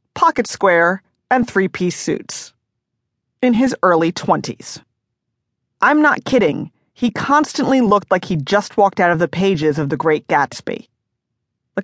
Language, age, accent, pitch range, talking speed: English, 40-59, American, 165-220 Hz, 140 wpm